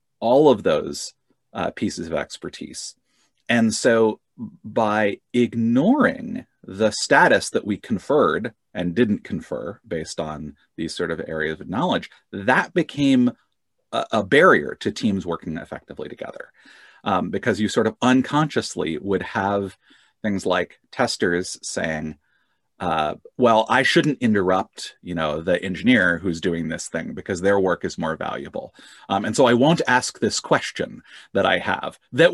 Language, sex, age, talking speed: English, male, 30-49, 145 wpm